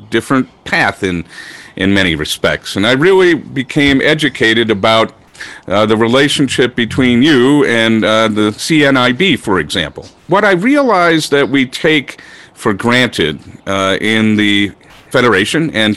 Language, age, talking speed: English, 50-69, 135 wpm